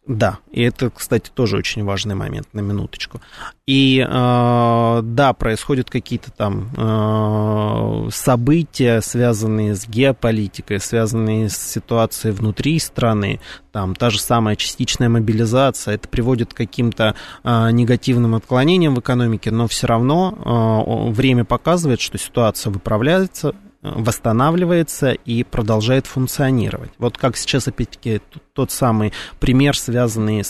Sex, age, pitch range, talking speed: male, 20-39, 110-130 Hz, 115 wpm